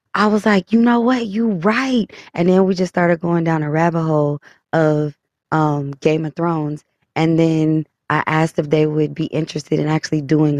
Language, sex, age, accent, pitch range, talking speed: English, female, 20-39, American, 150-175 Hz, 200 wpm